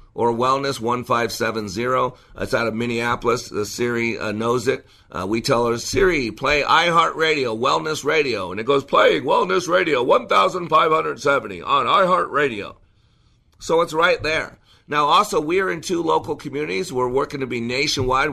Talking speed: 155 wpm